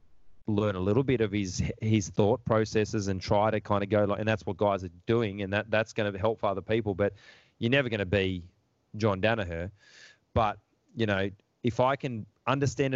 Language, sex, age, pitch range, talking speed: English, male, 20-39, 100-115 Hz, 205 wpm